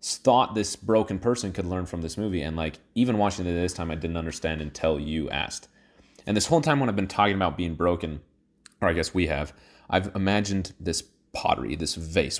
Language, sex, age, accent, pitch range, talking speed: English, male, 30-49, American, 85-105 Hz, 215 wpm